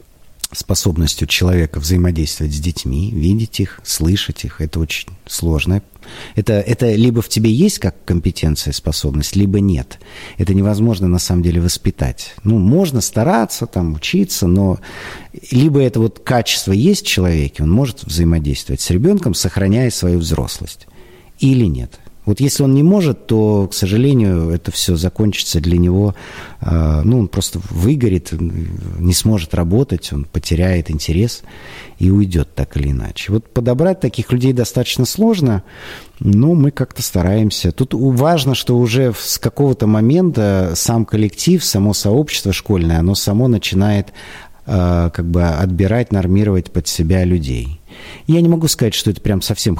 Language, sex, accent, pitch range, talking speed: Russian, male, native, 85-115 Hz, 145 wpm